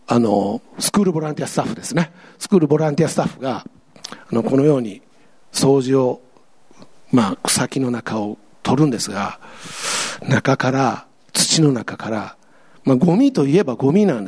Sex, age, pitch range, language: male, 50-69, 120-170 Hz, Japanese